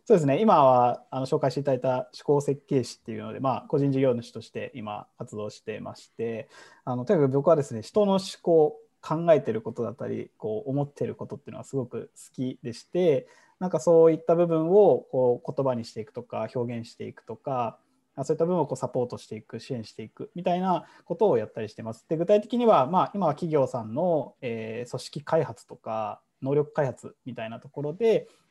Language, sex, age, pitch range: Japanese, male, 20-39, 115-155 Hz